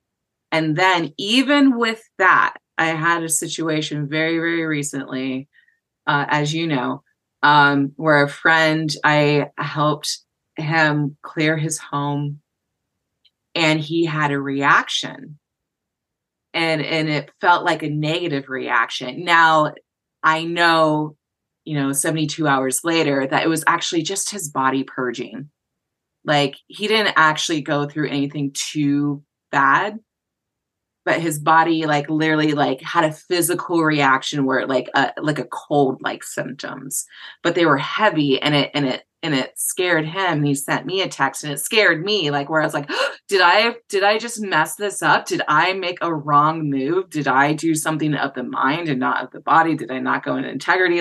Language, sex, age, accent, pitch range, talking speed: English, female, 20-39, American, 145-165 Hz, 165 wpm